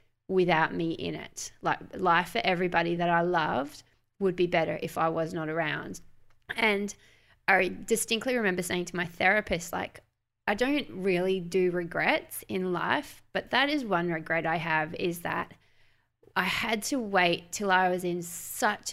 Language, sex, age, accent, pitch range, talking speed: English, female, 20-39, Australian, 170-215 Hz, 170 wpm